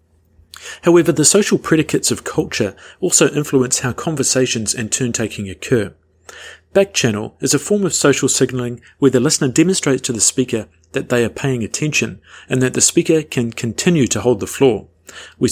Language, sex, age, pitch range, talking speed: English, male, 40-59, 110-140 Hz, 165 wpm